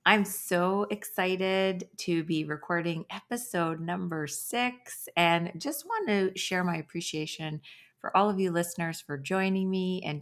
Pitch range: 160-205 Hz